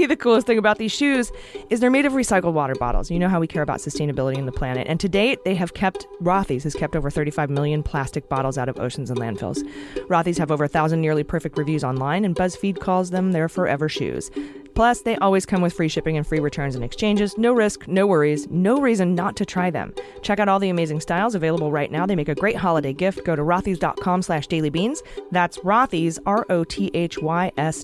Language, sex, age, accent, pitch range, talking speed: English, female, 30-49, American, 145-195 Hz, 220 wpm